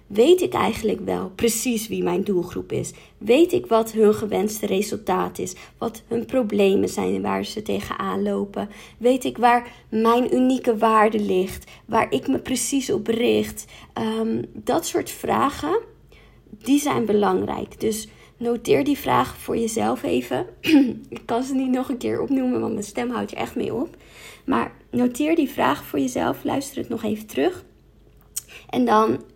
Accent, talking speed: Dutch, 165 wpm